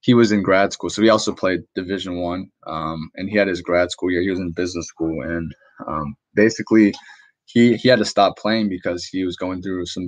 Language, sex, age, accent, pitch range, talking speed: English, male, 20-39, American, 85-105 Hz, 230 wpm